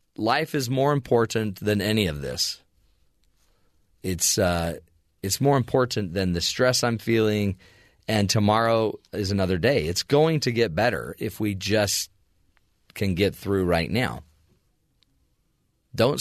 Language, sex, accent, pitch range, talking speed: English, male, American, 90-120 Hz, 135 wpm